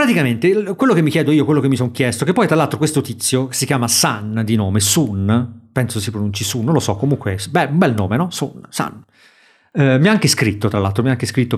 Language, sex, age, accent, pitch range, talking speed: Italian, male, 40-59, native, 125-160 Hz, 260 wpm